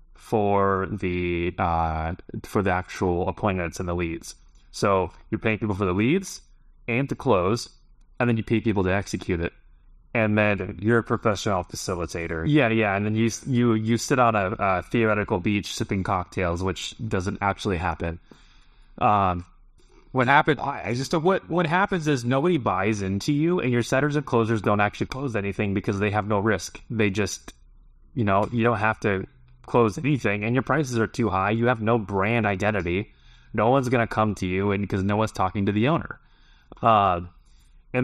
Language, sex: English, male